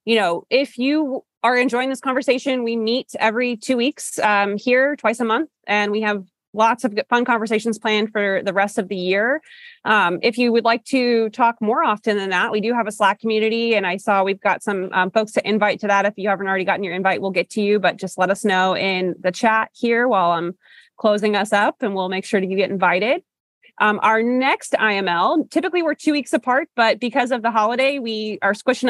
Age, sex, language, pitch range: 20-39, female, English, 200-255 Hz